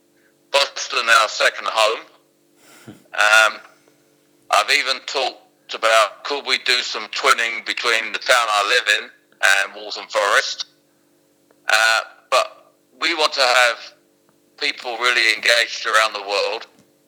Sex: male